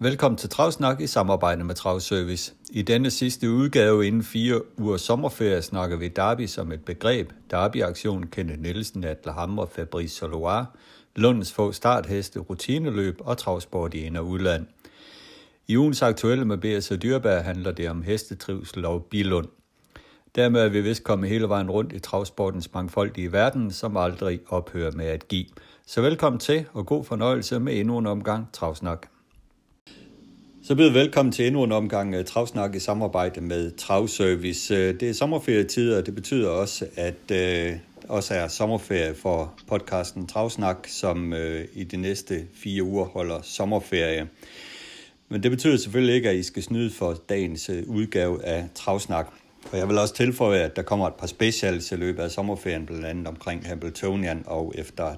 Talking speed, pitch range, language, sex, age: 165 wpm, 90-115 Hz, Danish, male, 60-79